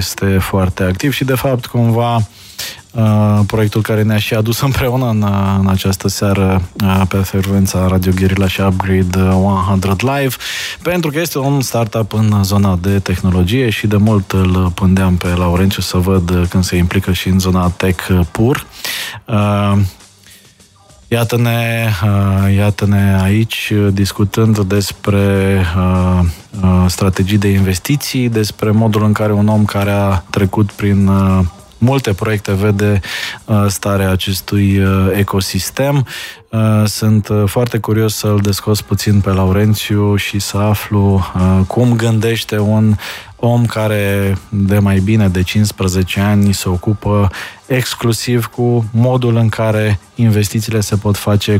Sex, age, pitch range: male, 20-39, 95-110 Hz